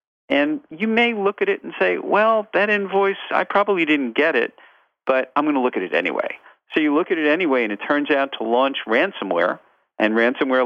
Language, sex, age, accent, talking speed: English, male, 40-59, American, 220 wpm